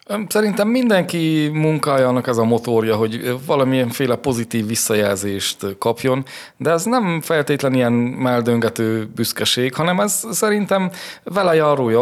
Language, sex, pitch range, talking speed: Hungarian, male, 110-135 Hz, 120 wpm